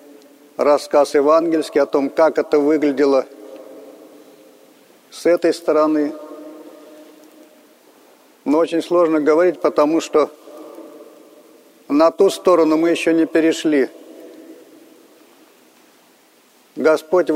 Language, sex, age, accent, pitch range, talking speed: Russian, male, 50-69, native, 150-170 Hz, 85 wpm